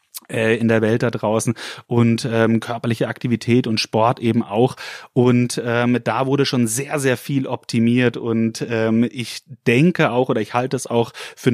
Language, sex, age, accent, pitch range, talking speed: German, male, 30-49, German, 110-125 Hz, 170 wpm